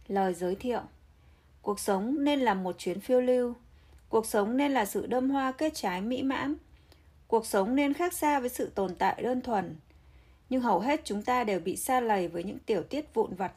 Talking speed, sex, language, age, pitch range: 210 wpm, female, Vietnamese, 20-39, 180-265 Hz